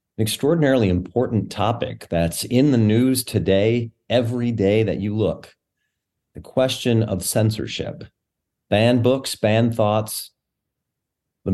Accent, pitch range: American, 95-120 Hz